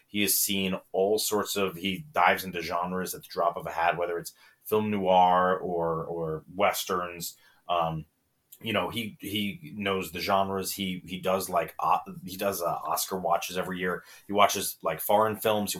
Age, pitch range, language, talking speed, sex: 30-49, 85-110 Hz, English, 185 wpm, male